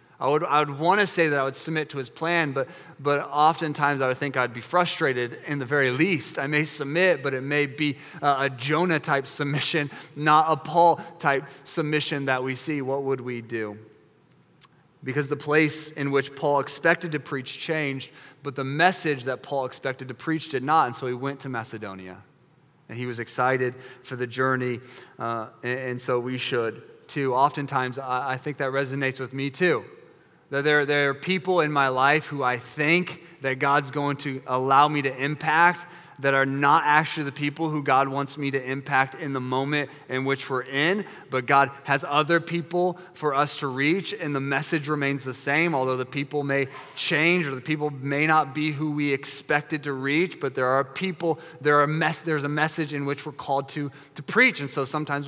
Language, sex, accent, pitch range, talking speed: English, male, American, 135-155 Hz, 200 wpm